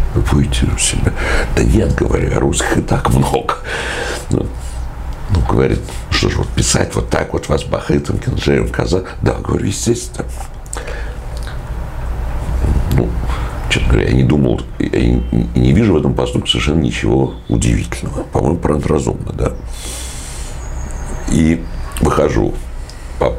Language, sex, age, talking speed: Russian, male, 60-79, 140 wpm